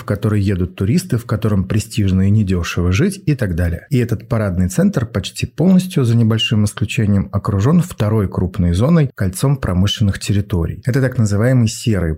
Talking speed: 165 wpm